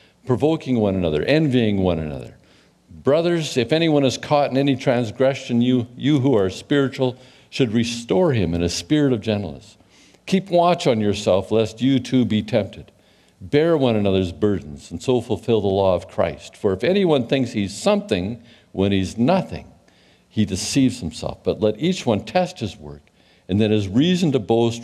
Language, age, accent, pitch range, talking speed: English, 50-69, American, 95-130 Hz, 175 wpm